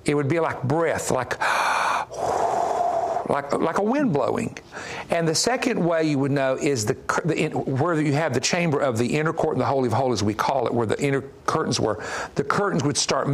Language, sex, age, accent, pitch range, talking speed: English, male, 50-69, American, 130-170 Hz, 210 wpm